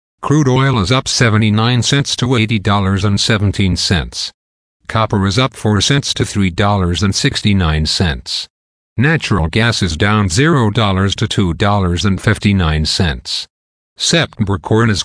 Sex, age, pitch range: male, 50-69, 95-125 Hz